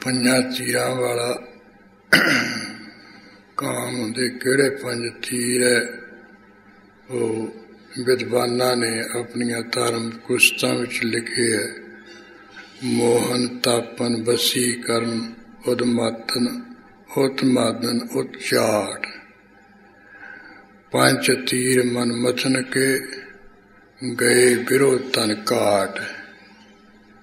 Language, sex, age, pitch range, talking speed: English, male, 60-79, 110-125 Hz, 55 wpm